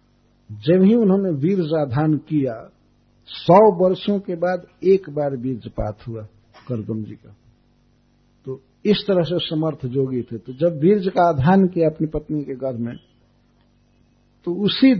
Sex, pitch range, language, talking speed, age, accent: male, 120-170 Hz, Hindi, 150 wpm, 50-69, native